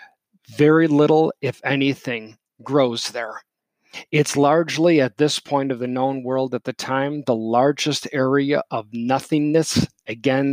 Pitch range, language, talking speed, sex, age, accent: 130-155 Hz, English, 135 wpm, male, 40-59, American